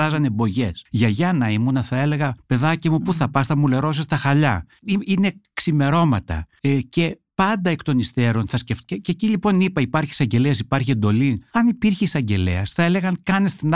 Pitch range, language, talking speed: 115-165 Hz, Greek, 185 wpm